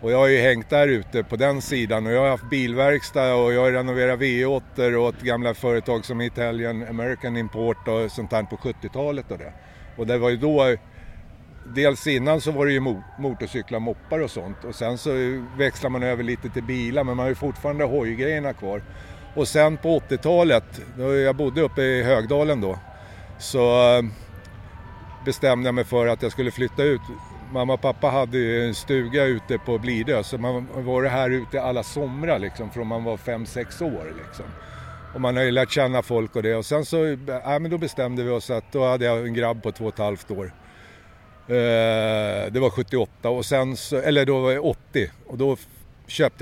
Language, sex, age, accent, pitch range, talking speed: Swedish, male, 60-79, native, 110-135 Hz, 200 wpm